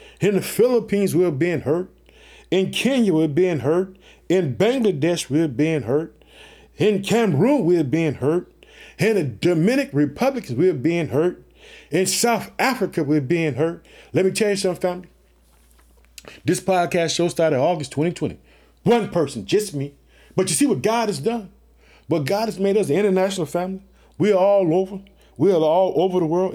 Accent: American